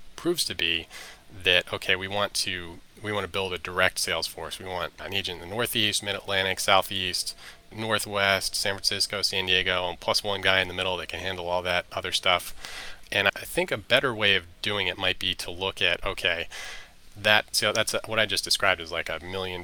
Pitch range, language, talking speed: 90-100 Hz, English, 215 wpm